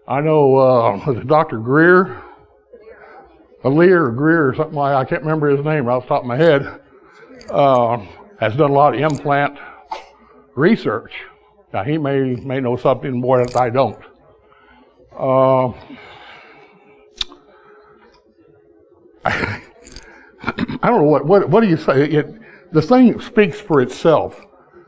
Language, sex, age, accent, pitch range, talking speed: English, male, 60-79, American, 130-170 Hz, 140 wpm